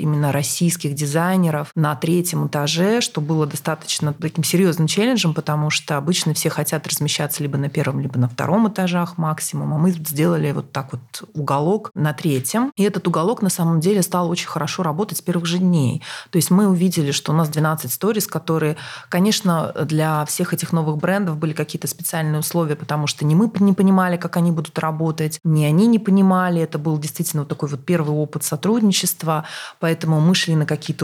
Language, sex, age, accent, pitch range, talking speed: Russian, female, 30-49, native, 150-180 Hz, 185 wpm